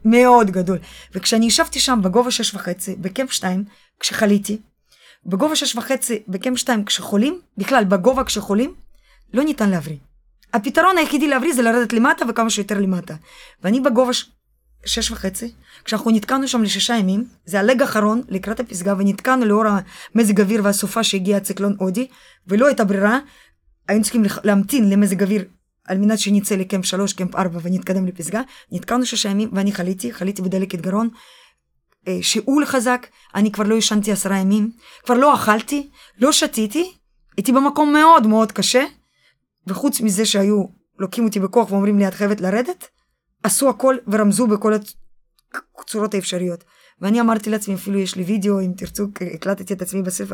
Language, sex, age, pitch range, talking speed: Hebrew, female, 20-39, 195-250 Hz, 145 wpm